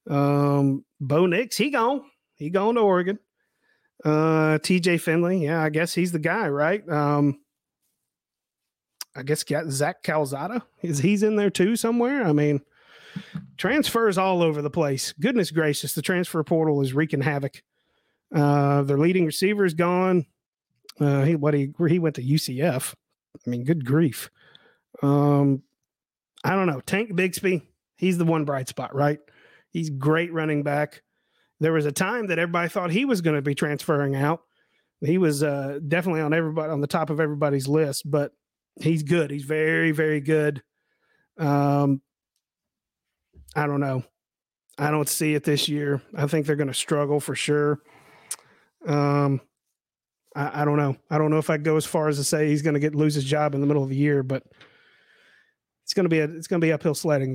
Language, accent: English, American